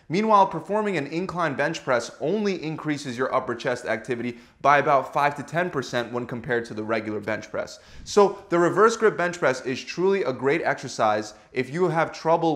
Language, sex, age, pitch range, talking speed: English, male, 20-39, 125-180 Hz, 185 wpm